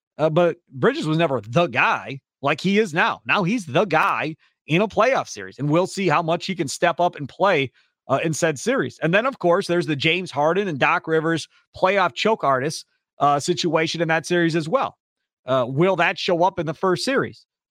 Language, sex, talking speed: English, male, 215 wpm